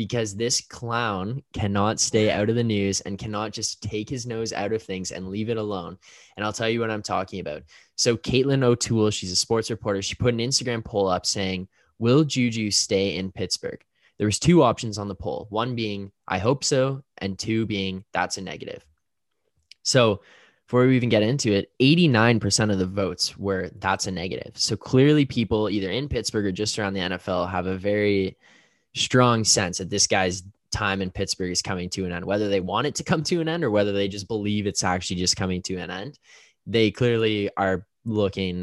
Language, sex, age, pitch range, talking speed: English, male, 10-29, 95-115 Hz, 210 wpm